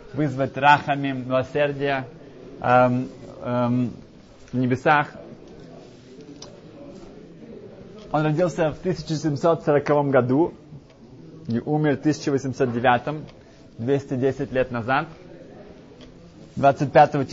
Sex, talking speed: male, 70 wpm